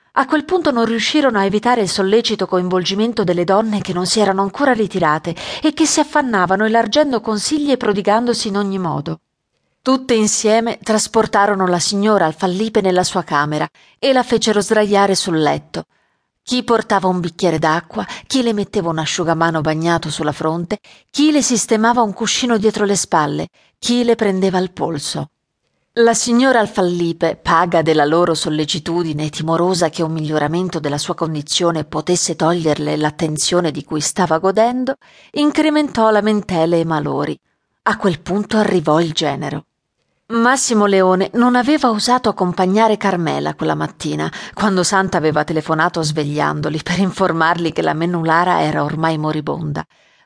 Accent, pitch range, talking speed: native, 165-225 Hz, 150 wpm